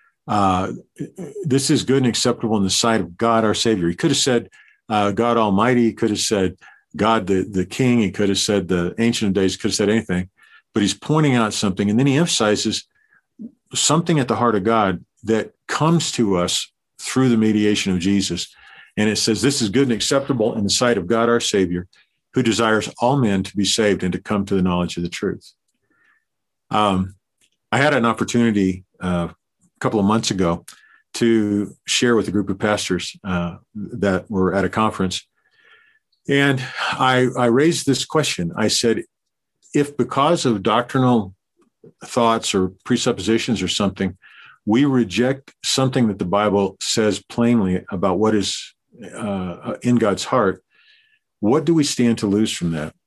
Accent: American